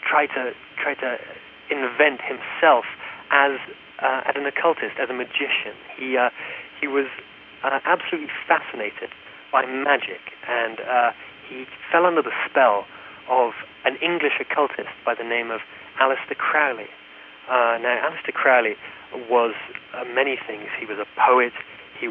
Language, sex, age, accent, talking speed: English, male, 30-49, British, 145 wpm